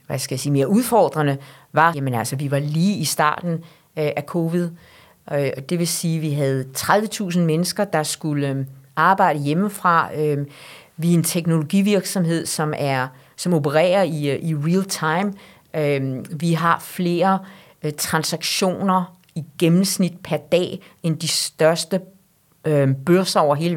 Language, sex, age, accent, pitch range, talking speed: Danish, female, 40-59, native, 155-185 Hz, 155 wpm